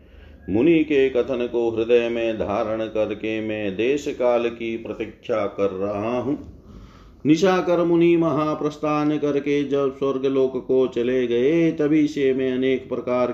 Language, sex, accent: Hindi, male, native